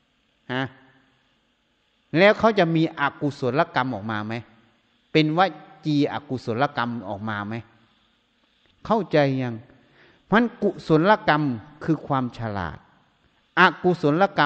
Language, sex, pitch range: Thai, male, 120-165 Hz